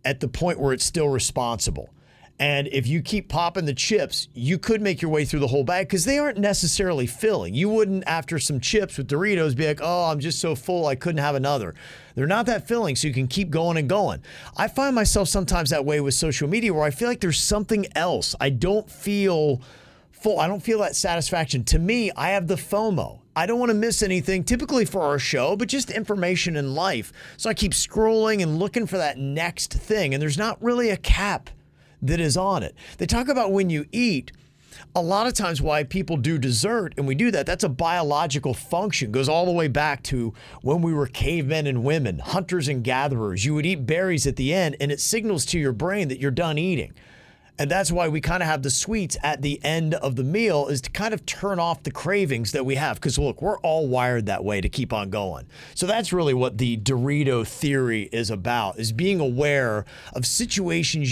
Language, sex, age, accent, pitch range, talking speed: English, male, 40-59, American, 135-195 Hz, 225 wpm